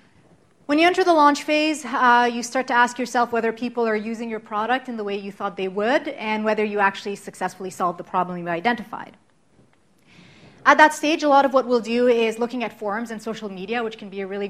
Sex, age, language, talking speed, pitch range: female, 30-49, English, 230 wpm, 200-250 Hz